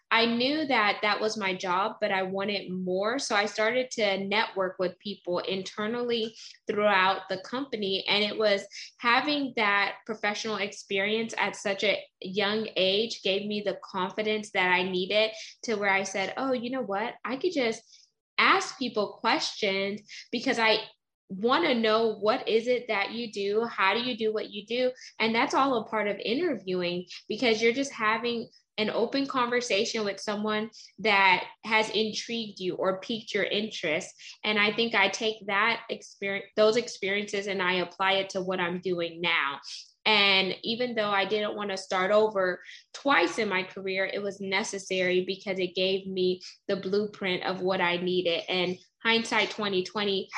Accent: American